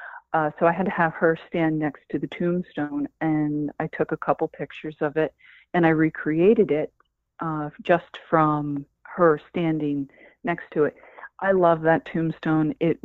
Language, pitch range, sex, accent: English, 150-185 Hz, female, American